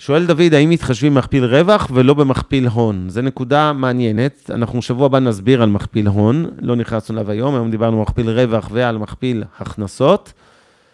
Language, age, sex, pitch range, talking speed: Hebrew, 30-49, male, 110-145 Hz, 170 wpm